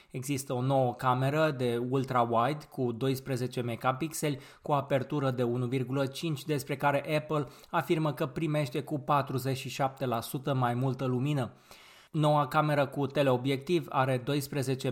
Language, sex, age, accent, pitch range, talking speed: Romanian, male, 20-39, native, 130-155 Hz, 125 wpm